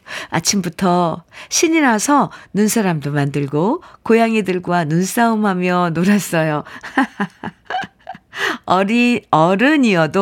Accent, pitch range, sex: native, 165-230 Hz, female